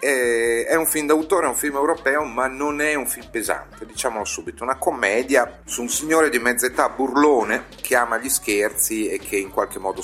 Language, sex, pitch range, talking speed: Italian, male, 110-150 Hz, 205 wpm